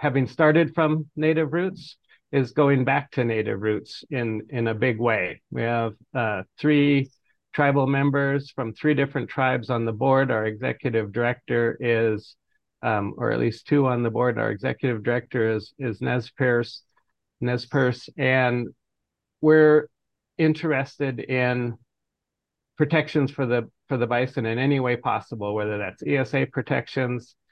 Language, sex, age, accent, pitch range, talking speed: English, male, 50-69, American, 115-140 Hz, 150 wpm